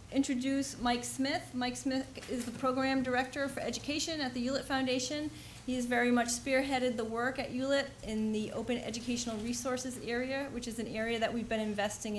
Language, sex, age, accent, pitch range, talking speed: English, female, 40-59, American, 210-260 Hz, 185 wpm